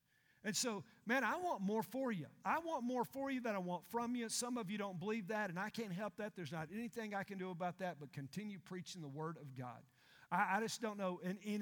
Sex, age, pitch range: male, 50-69, 160-200 Hz